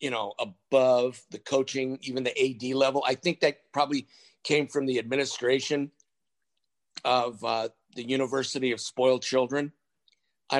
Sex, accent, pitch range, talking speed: male, American, 120-155 Hz, 140 wpm